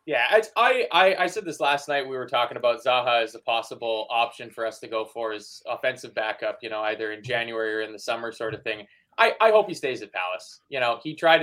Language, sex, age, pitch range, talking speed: English, male, 20-39, 125-210 Hz, 245 wpm